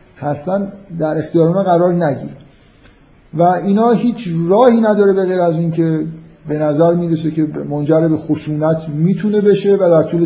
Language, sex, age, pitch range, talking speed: Persian, male, 50-69, 145-175 Hz, 140 wpm